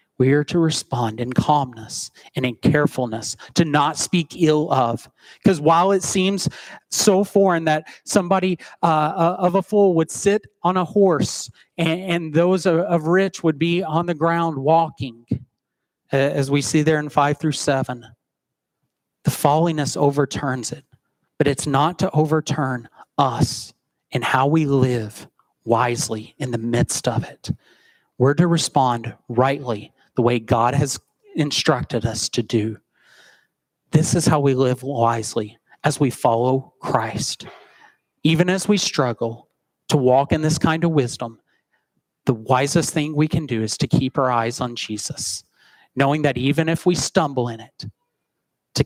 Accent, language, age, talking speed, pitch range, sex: American, English, 30-49, 150 wpm, 125-165 Hz, male